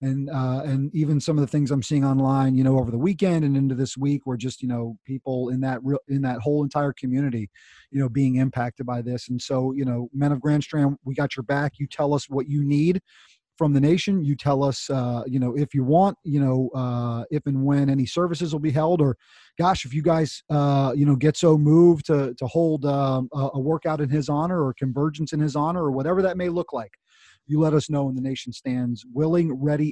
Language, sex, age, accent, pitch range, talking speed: English, male, 30-49, American, 125-150 Hz, 245 wpm